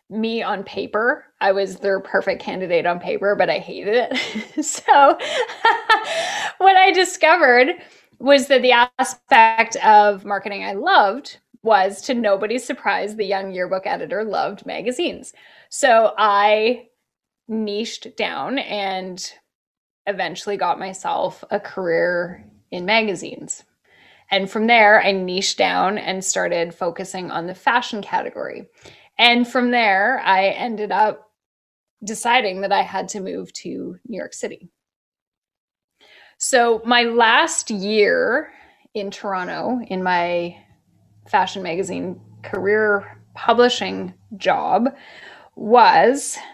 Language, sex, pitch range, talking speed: English, female, 190-255 Hz, 115 wpm